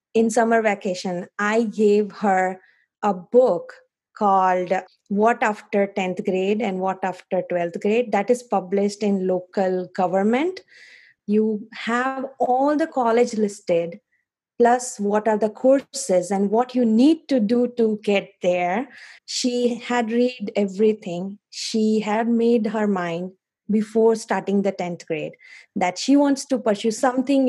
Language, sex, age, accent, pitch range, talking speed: English, female, 20-39, Indian, 195-245 Hz, 140 wpm